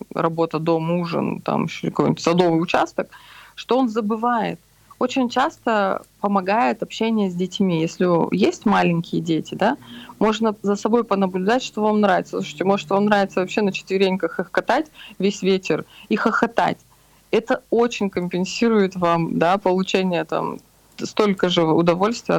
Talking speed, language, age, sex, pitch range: 140 wpm, Russian, 20-39, female, 175-215 Hz